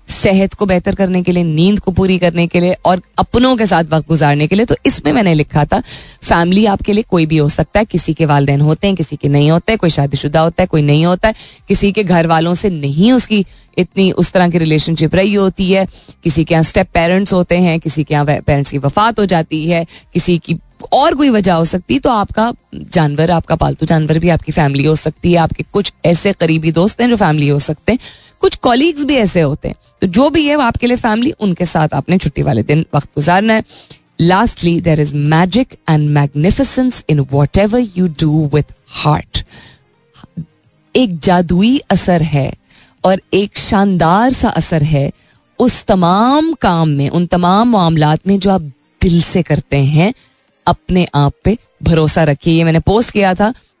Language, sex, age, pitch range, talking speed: Hindi, female, 20-39, 155-200 Hz, 200 wpm